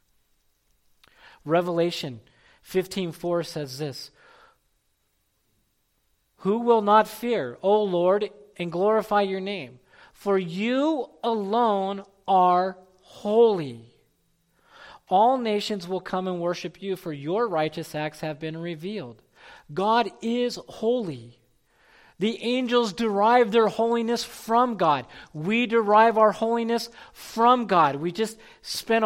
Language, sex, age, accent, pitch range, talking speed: English, male, 40-59, American, 175-230 Hz, 105 wpm